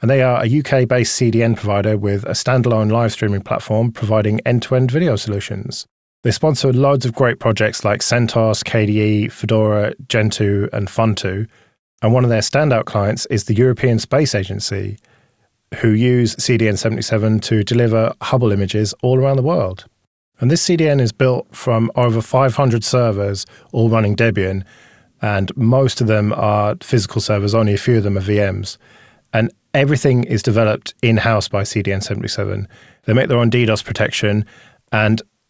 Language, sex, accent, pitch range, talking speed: English, male, British, 105-125 Hz, 155 wpm